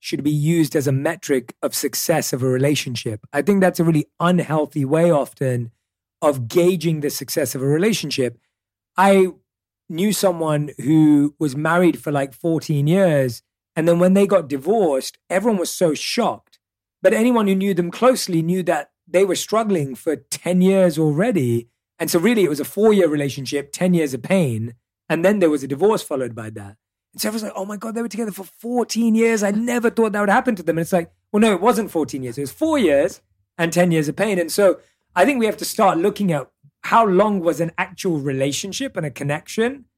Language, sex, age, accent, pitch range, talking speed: English, male, 30-49, British, 130-185 Hz, 210 wpm